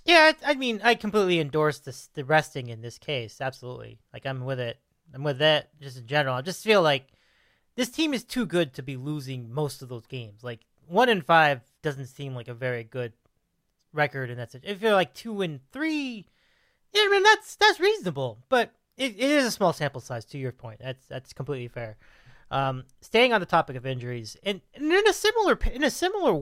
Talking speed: 215 wpm